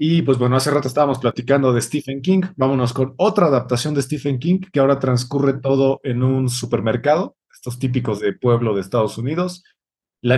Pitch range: 125-170 Hz